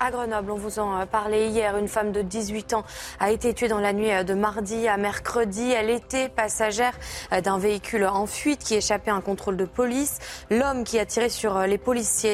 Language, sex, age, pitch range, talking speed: French, female, 20-39, 195-235 Hz, 210 wpm